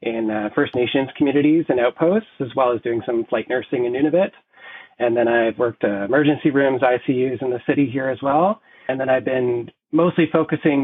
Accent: American